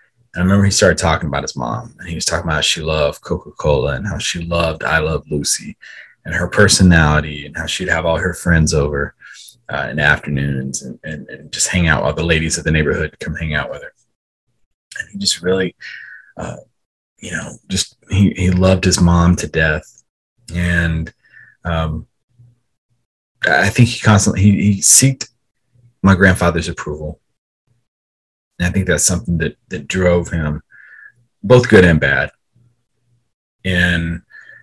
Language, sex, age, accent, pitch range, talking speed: English, male, 30-49, American, 80-110 Hz, 170 wpm